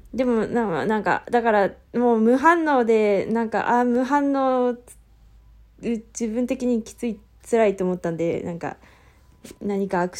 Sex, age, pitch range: female, 20-39, 195-245 Hz